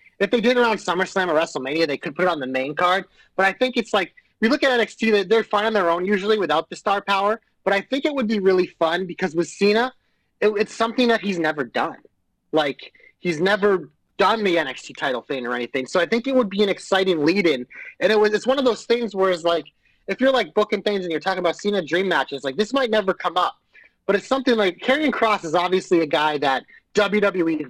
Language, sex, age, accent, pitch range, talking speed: English, male, 30-49, American, 170-215 Hz, 245 wpm